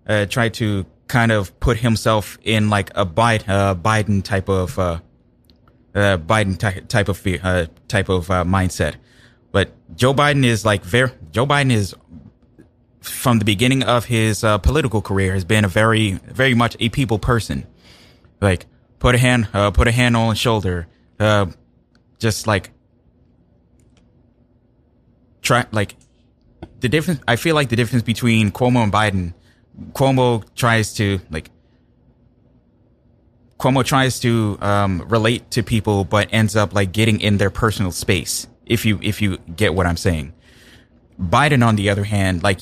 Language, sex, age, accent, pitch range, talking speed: English, male, 20-39, American, 100-120 Hz, 160 wpm